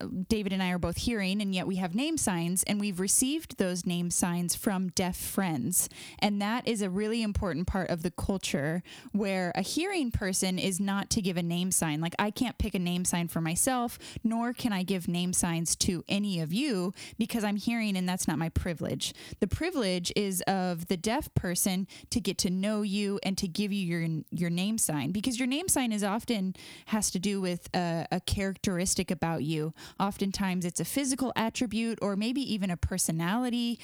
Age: 10-29